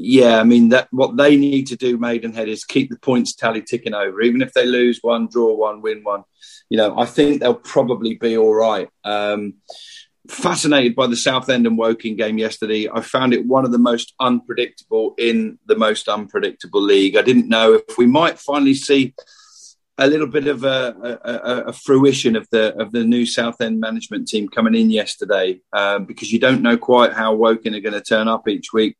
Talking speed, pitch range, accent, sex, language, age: 210 wpm, 115-135 Hz, British, male, English, 40-59